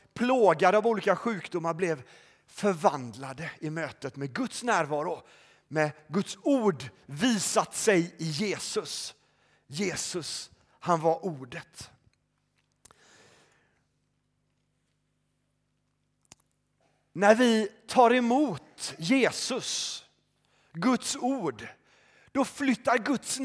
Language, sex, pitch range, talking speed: Swedish, male, 155-230 Hz, 80 wpm